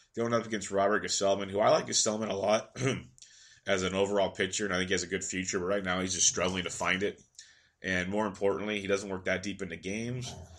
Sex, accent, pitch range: male, American, 95-110 Hz